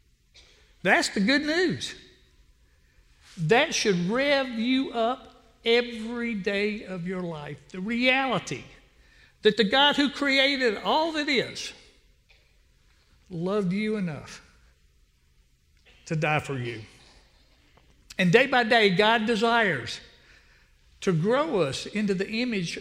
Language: English